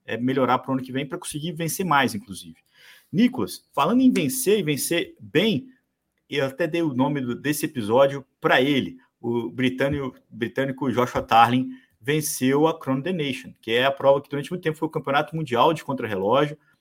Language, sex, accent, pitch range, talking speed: Portuguese, male, Brazilian, 125-170 Hz, 190 wpm